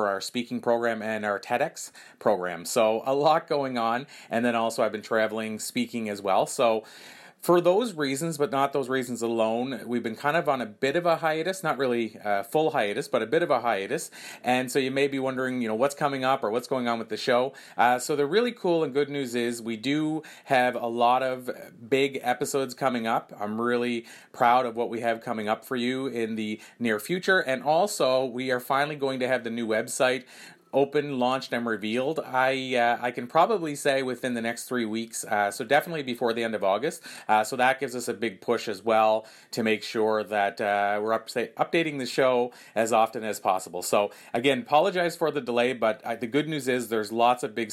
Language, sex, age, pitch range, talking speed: English, male, 30-49, 115-135 Hz, 225 wpm